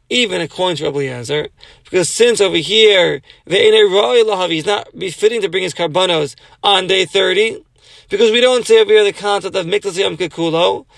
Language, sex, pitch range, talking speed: English, male, 155-210 Hz, 160 wpm